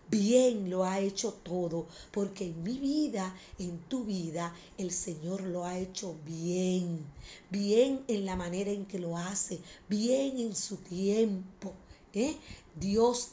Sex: female